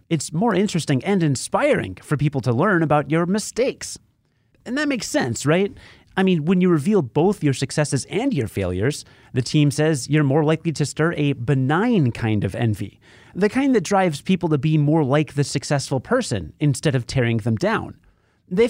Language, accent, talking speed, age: English, American, 190 wpm, 30-49